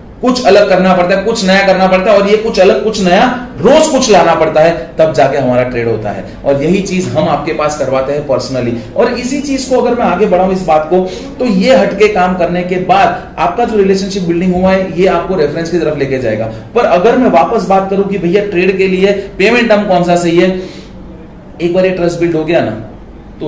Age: 30-49